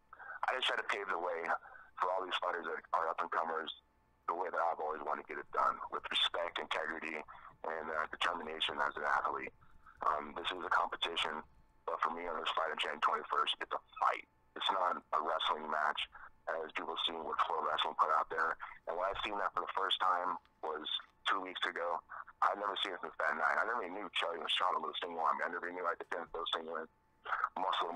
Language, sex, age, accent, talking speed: English, male, 30-49, American, 230 wpm